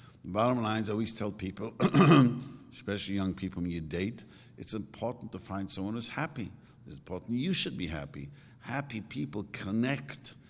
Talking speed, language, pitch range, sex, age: 160 wpm, English, 100-135 Hz, male, 50-69